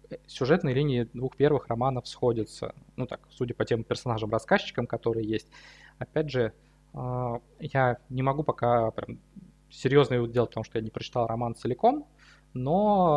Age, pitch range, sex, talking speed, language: 20-39, 120-145 Hz, male, 145 wpm, Russian